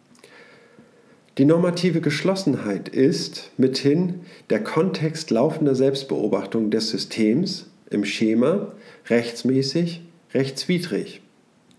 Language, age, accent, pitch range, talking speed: German, 50-69, German, 120-155 Hz, 75 wpm